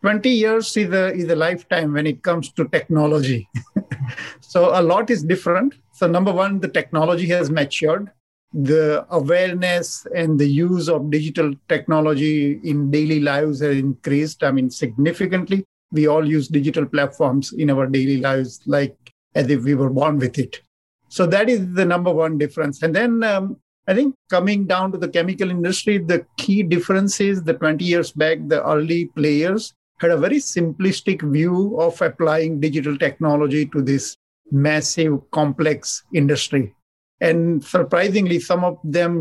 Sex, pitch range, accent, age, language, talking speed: male, 150-180 Hz, Indian, 50-69, English, 160 wpm